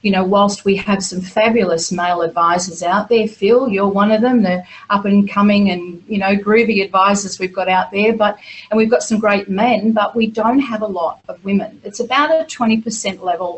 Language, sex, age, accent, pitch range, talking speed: English, female, 40-59, Australian, 185-225 Hz, 215 wpm